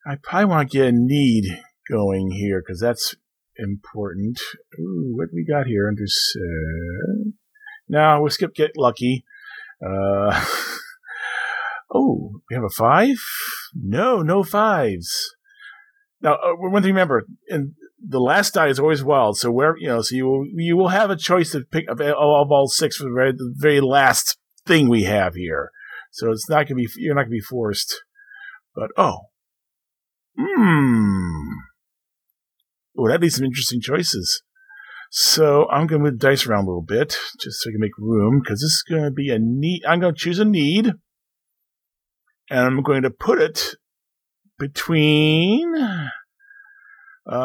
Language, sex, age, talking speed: English, male, 40-59, 170 wpm